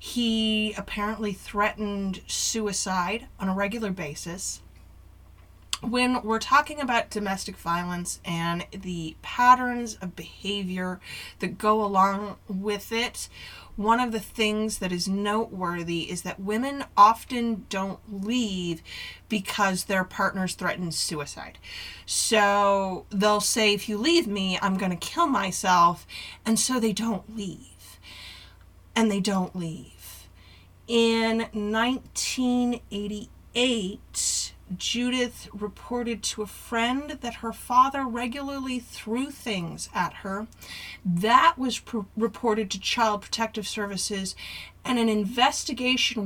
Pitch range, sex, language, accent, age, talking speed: 185-235 Hz, female, English, American, 30-49, 115 wpm